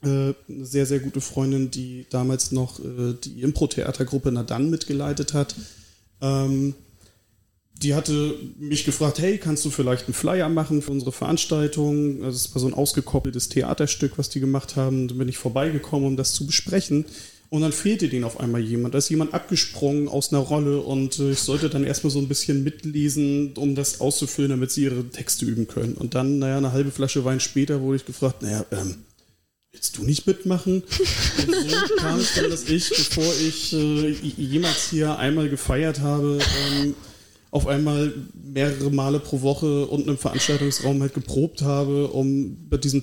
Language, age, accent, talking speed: English, 30-49, German, 175 wpm